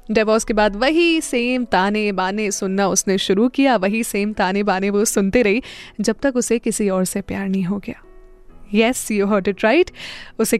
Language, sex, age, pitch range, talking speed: Hindi, female, 20-39, 210-255 Hz, 190 wpm